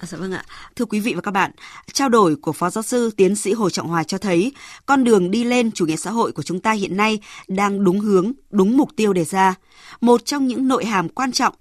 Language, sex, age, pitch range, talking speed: Vietnamese, female, 20-39, 175-230 Hz, 250 wpm